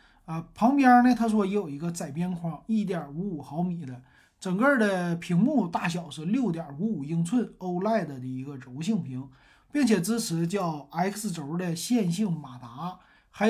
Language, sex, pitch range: Chinese, male, 155-205 Hz